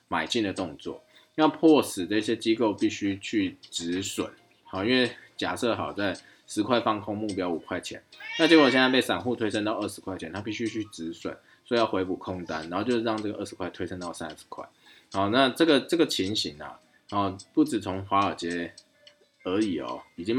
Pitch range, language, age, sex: 95-120 Hz, Chinese, 20-39, male